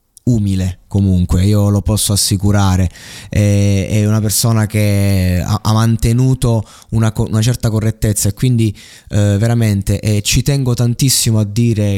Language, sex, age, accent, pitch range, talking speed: Italian, male, 20-39, native, 95-110 Hz, 115 wpm